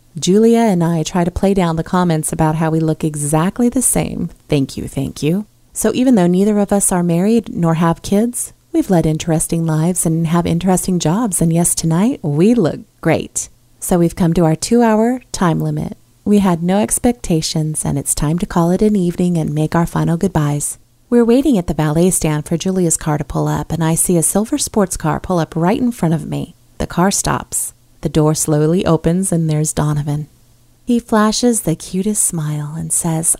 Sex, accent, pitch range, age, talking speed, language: female, American, 155-190 Hz, 30-49, 205 wpm, English